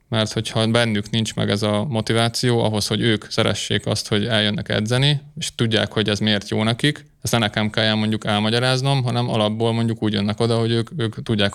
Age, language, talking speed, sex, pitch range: 20-39, Hungarian, 205 wpm, male, 110-115 Hz